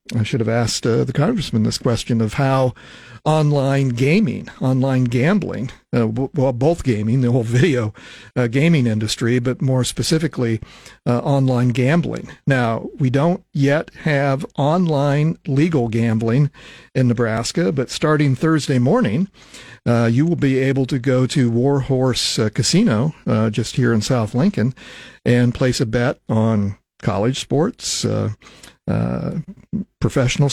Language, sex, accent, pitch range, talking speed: English, male, American, 115-140 Hz, 145 wpm